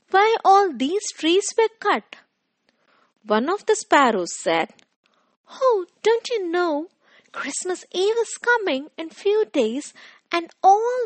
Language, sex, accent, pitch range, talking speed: English, female, Indian, 235-375 Hz, 130 wpm